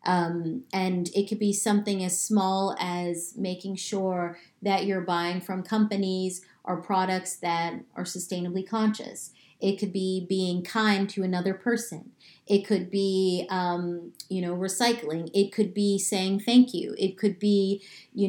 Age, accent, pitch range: 30-49, American, 185-210 Hz